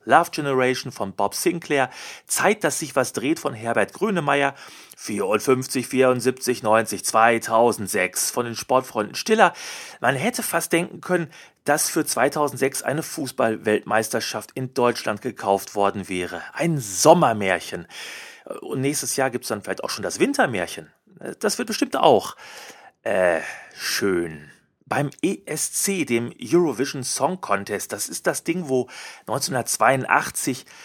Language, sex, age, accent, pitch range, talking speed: German, male, 30-49, German, 115-160 Hz, 130 wpm